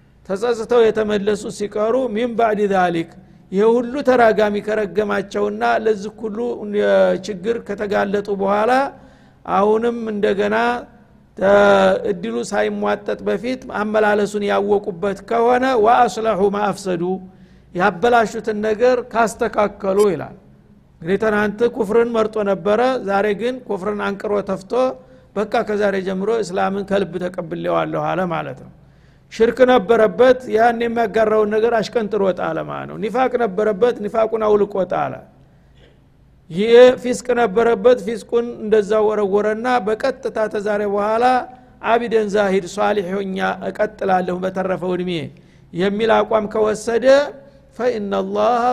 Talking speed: 90 wpm